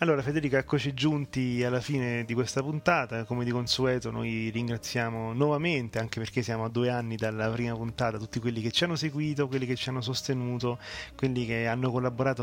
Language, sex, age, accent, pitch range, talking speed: Italian, male, 30-49, native, 115-140 Hz, 190 wpm